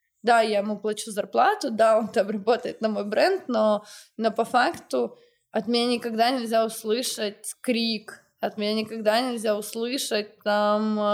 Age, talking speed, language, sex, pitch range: 20-39, 145 wpm, Ukrainian, female, 210-245 Hz